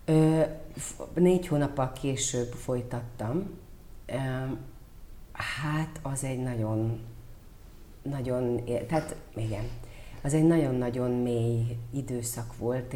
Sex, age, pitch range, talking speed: female, 40-59, 120-155 Hz, 85 wpm